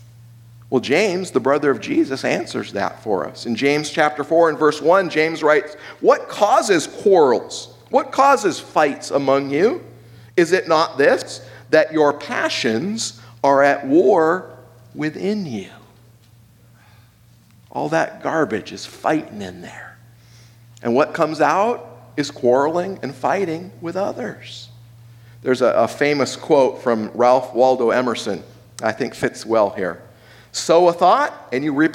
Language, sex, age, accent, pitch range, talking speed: English, male, 50-69, American, 115-180 Hz, 140 wpm